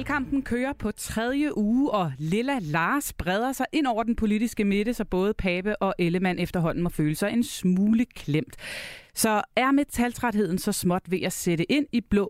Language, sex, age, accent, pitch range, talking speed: Danish, female, 30-49, native, 170-235 Hz, 190 wpm